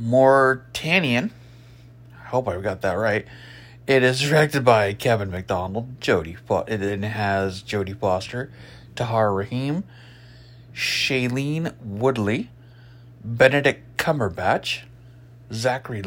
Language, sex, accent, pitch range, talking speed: English, male, American, 115-130 Hz, 95 wpm